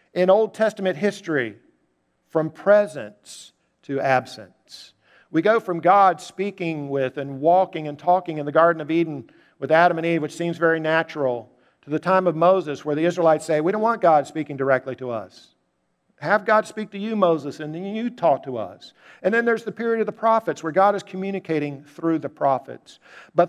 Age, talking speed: 50-69, 195 wpm